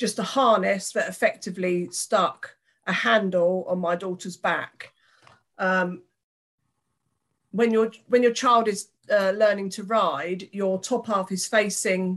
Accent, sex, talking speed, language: British, female, 140 wpm, English